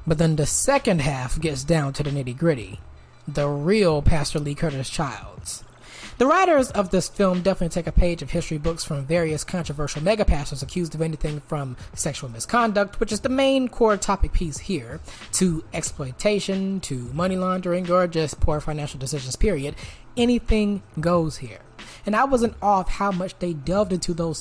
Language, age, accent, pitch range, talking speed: English, 20-39, American, 150-205 Hz, 175 wpm